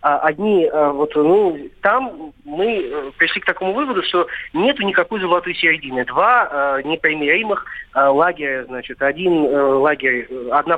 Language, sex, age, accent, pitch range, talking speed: Russian, male, 20-39, native, 145-185 Hz, 135 wpm